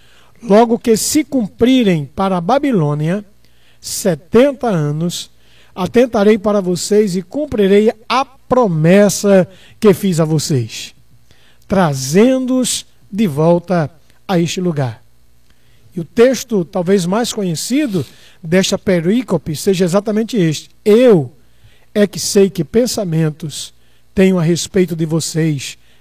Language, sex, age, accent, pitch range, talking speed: Portuguese, male, 50-69, Brazilian, 150-235 Hz, 110 wpm